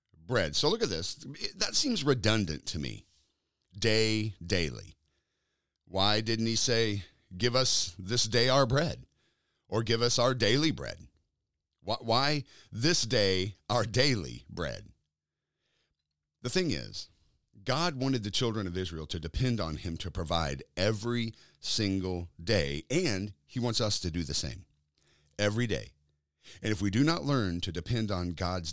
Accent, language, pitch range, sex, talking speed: American, English, 85-125 Hz, male, 150 wpm